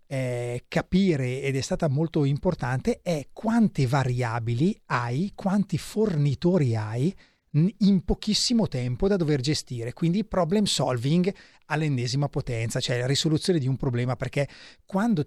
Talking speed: 125 wpm